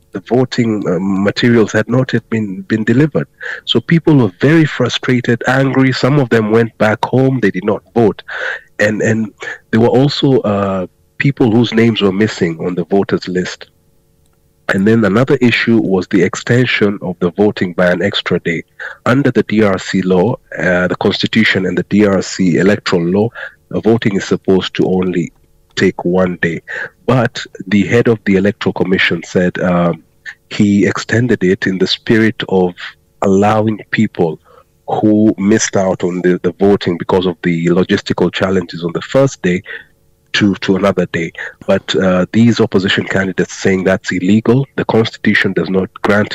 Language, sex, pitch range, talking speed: English, male, 90-115 Hz, 165 wpm